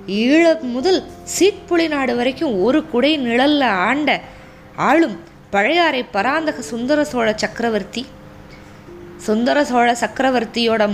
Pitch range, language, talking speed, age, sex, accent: 215-290 Hz, Tamil, 95 wpm, 20-39, female, native